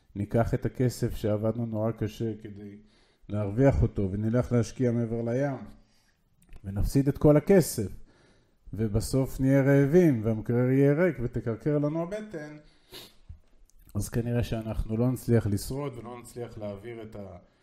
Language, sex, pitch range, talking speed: Hebrew, male, 105-125 Hz, 125 wpm